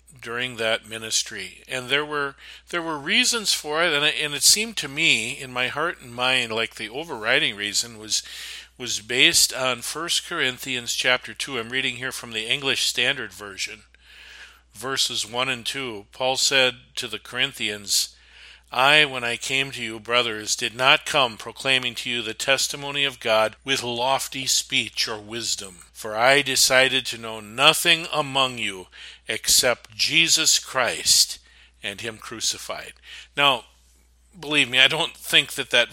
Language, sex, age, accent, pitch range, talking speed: English, male, 50-69, American, 110-140 Hz, 160 wpm